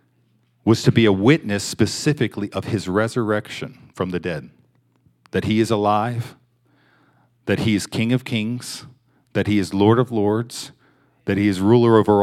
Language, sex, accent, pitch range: English, male, American, 105-130 Hz